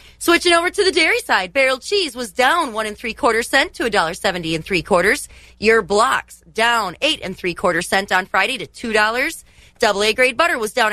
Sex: female